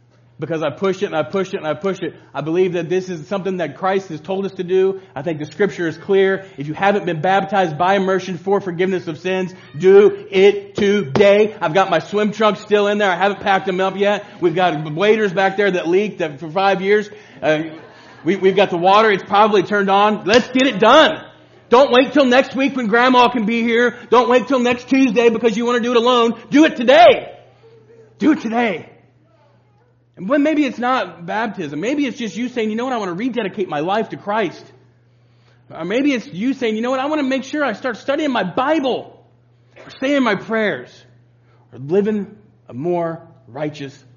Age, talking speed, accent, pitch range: 40-59, 215 wpm, American, 140-215 Hz